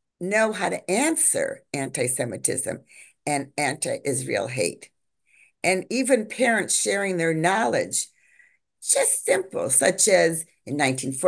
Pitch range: 165-250 Hz